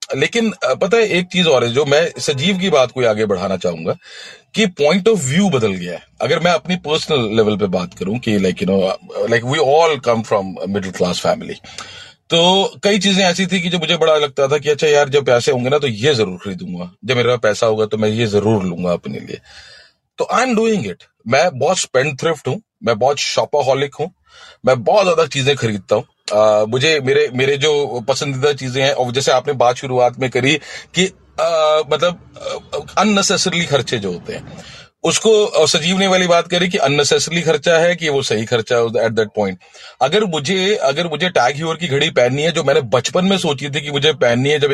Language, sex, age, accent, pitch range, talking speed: Hindi, male, 40-59, native, 130-175 Hz, 210 wpm